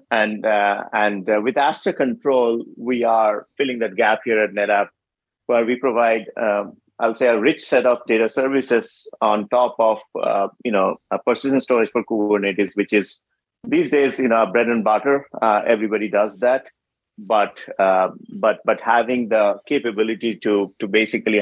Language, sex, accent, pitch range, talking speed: English, male, Indian, 100-120 Hz, 170 wpm